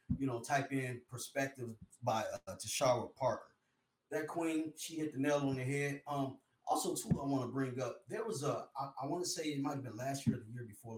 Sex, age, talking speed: male, 30-49, 240 wpm